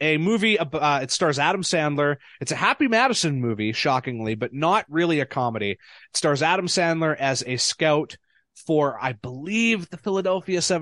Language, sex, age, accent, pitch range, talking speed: English, male, 20-39, American, 125-160 Hz, 165 wpm